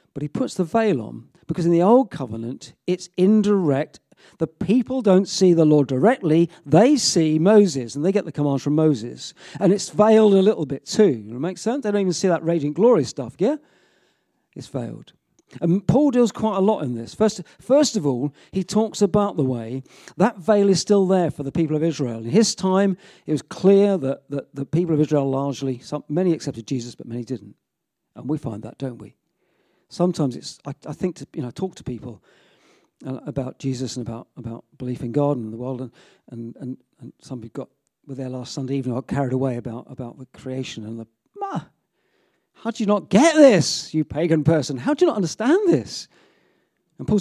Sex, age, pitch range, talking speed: male, 40-59, 130-195 Hz, 210 wpm